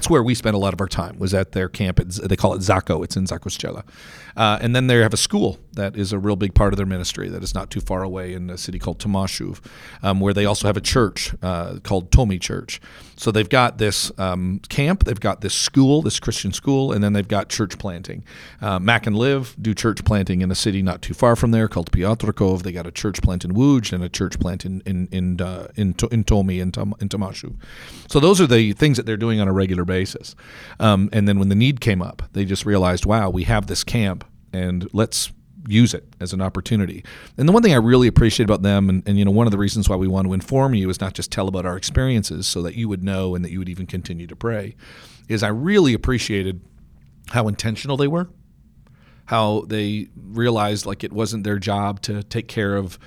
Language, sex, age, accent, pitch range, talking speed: English, male, 40-59, American, 95-115 Hz, 245 wpm